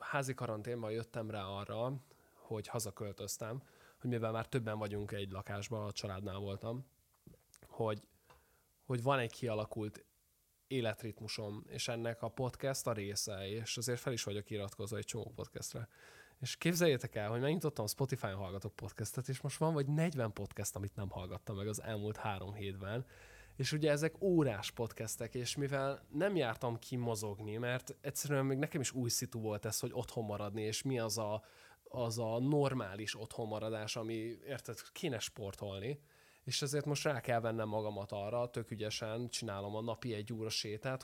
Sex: male